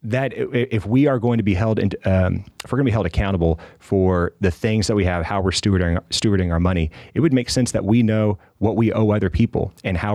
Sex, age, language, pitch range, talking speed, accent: male, 30-49, English, 90-110 Hz, 255 wpm, American